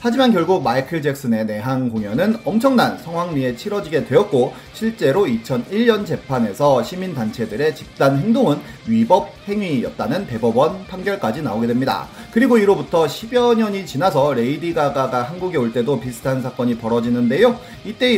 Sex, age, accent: male, 30-49, native